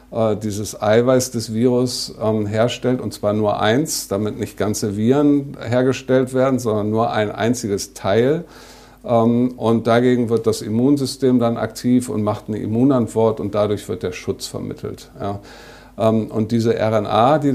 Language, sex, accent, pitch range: German, male, German, 110-125 Hz